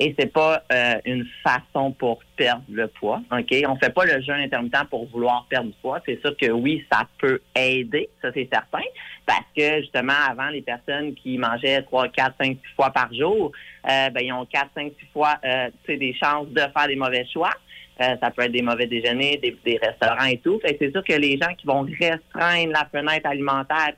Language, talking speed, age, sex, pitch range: French, 225 wpm, 30-49, male, 125-150 Hz